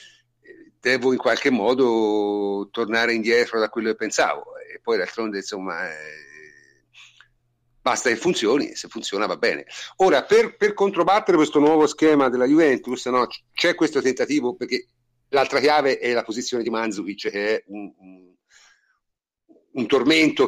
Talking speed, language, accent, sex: 145 wpm, Italian, native, male